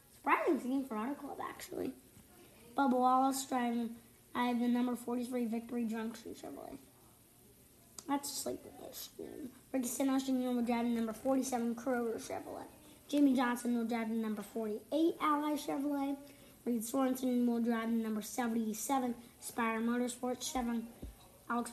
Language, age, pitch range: English, 20-39, 230-275 Hz